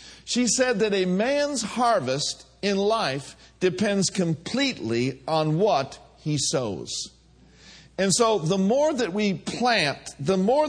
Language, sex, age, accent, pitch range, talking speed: English, male, 50-69, American, 155-220 Hz, 130 wpm